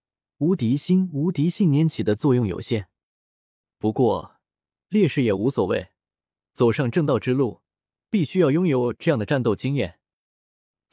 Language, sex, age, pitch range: Chinese, male, 20-39, 110-165 Hz